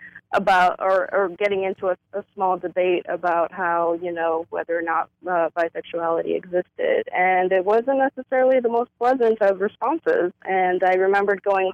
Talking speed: 165 wpm